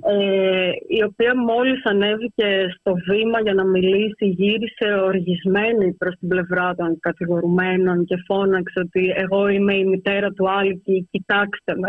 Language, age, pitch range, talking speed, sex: Greek, 30-49, 180-210 Hz, 140 wpm, female